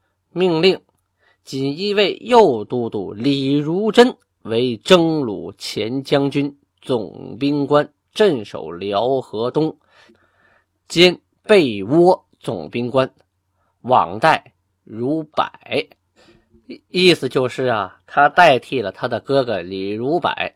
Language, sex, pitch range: Chinese, male, 110-165 Hz